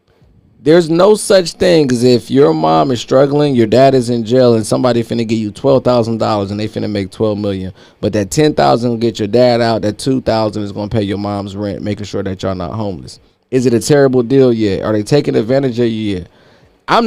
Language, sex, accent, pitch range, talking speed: English, male, American, 105-150 Hz, 225 wpm